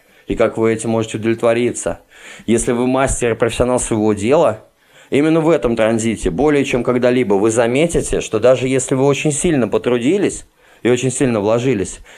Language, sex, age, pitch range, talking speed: Russian, male, 20-39, 115-145 Hz, 165 wpm